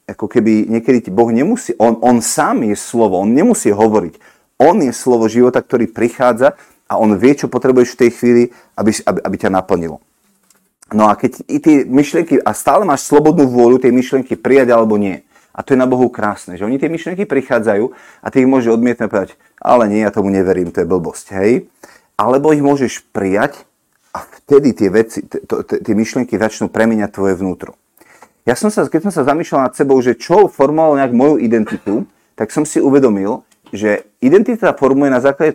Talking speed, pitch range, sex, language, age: 190 wpm, 115-145 Hz, male, Slovak, 40-59